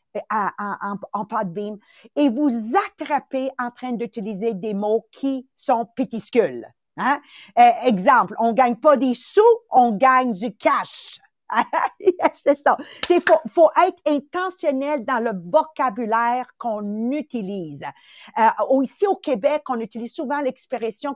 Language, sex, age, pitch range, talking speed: English, female, 50-69, 230-290 Hz, 145 wpm